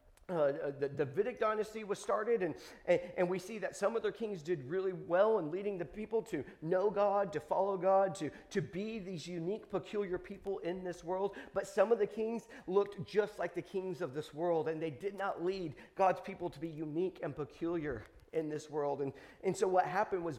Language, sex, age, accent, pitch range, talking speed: English, male, 40-59, American, 160-200 Hz, 220 wpm